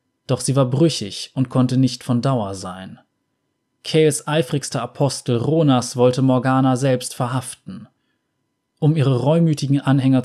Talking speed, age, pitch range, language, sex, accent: 130 wpm, 20-39, 120-140 Hz, German, male, German